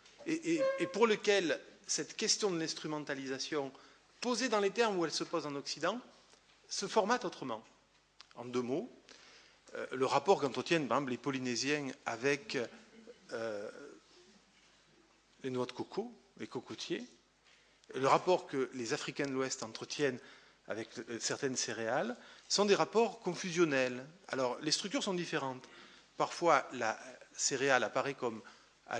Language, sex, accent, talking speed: French, male, French, 140 wpm